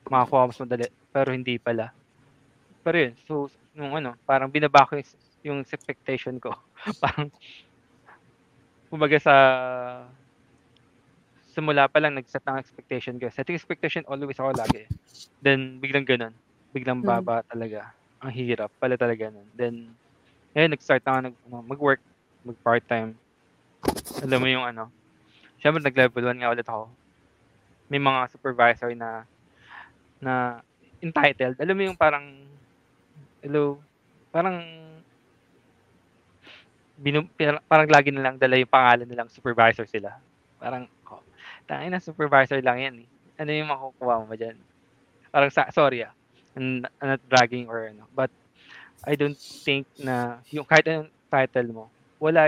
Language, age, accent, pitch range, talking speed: Filipino, 20-39, native, 120-145 Hz, 140 wpm